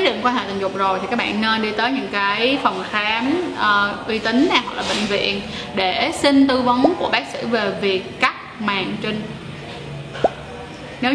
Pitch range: 205-265 Hz